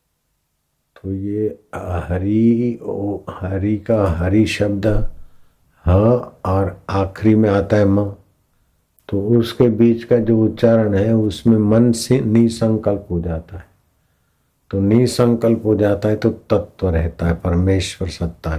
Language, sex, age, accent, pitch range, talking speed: Hindi, male, 60-79, native, 85-110 Hz, 130 wpm